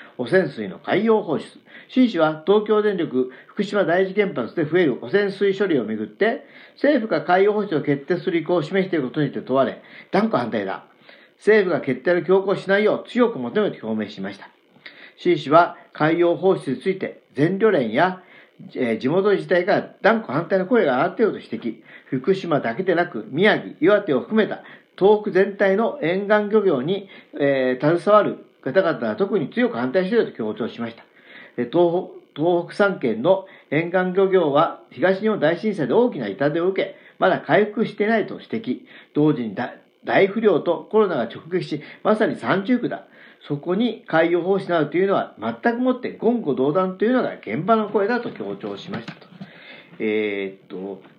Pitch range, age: 155-215 Hz, 50-69